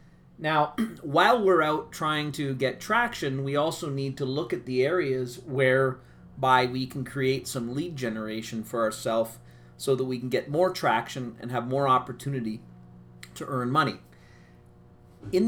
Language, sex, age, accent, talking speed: English, male, 40-59, American, 155 wpm